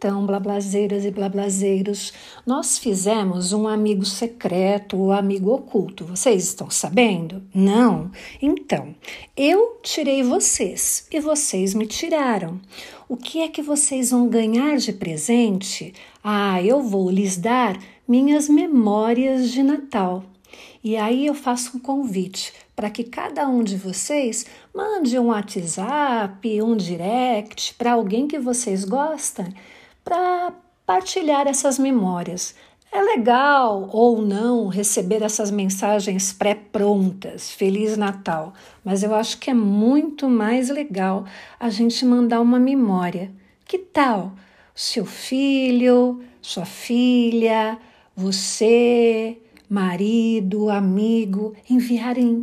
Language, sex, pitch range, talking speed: Portuguese, female, 200-250 Hz, 115 wpm